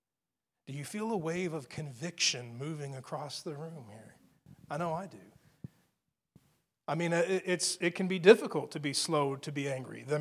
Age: 40-59